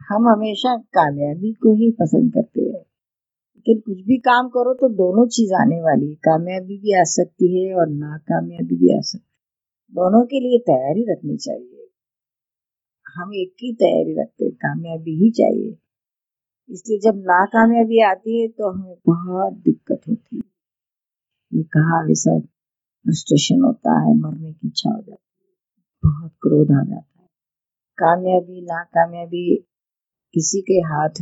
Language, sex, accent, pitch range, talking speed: Hindi, female, native, 160-215 Hz, 145 wpm